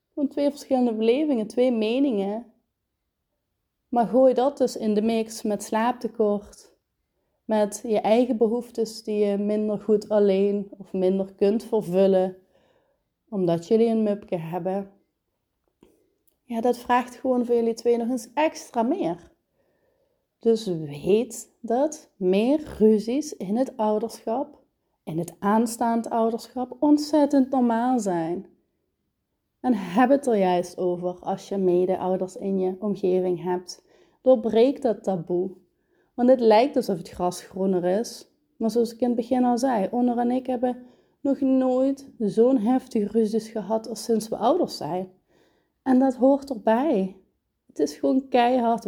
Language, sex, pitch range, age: Dutch, female, 200-255 Hz, 30-49